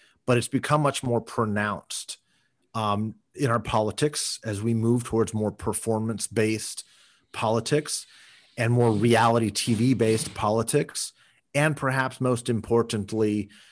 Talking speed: 115 wpm